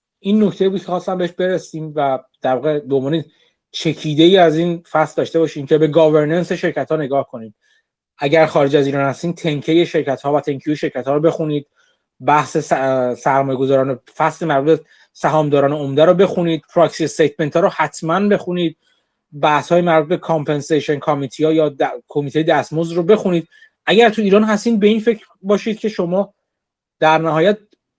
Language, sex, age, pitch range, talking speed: Persian, male, 30-49, 145-180 Hz, 165 wpm